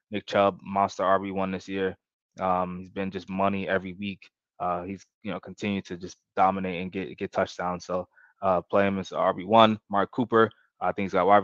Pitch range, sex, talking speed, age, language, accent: 95-105 Hz, male, 205 wpm, 20-39, English, American